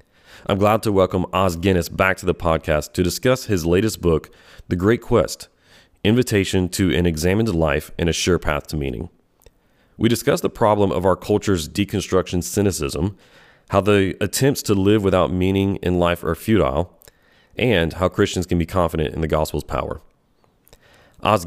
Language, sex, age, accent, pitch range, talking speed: English, male, 30-49, American, 85-100 Hz, 170 wpm